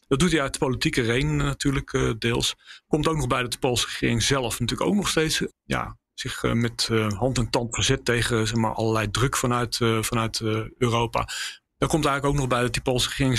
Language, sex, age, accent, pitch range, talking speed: Dutch, male, 40-59, Dutch, 115-130 Hz, 210 wpm